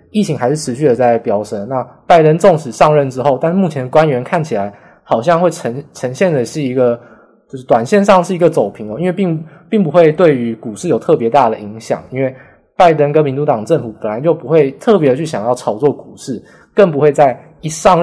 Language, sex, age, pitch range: Chinese, male, 20-39, 125-170 Hz